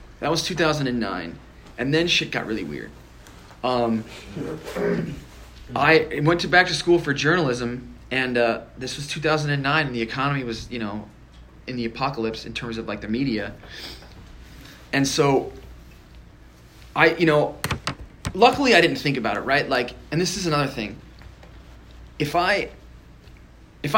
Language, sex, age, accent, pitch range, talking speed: English, male, 20-39, American, 110-155 Hz, 145 wpm